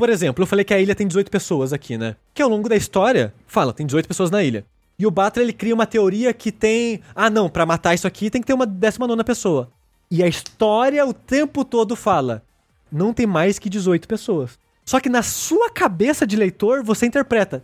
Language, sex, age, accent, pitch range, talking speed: Portuguese, male, 20-39, Brazilian, 170-235 Hz, 225 wpm